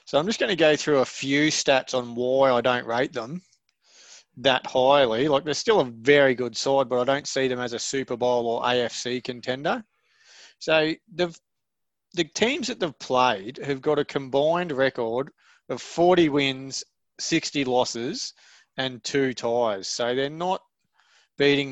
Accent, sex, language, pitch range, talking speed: Australian, male, English, 125-150 Hz, 165 wpm